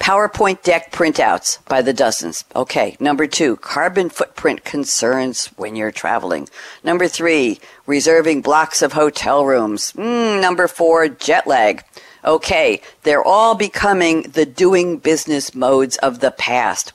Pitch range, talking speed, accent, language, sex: 140-215 Hz, 135 wpm, American, English, female